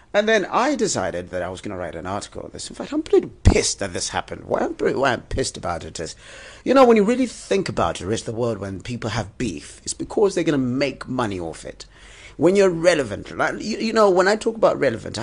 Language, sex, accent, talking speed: English, male, British, 250 wpm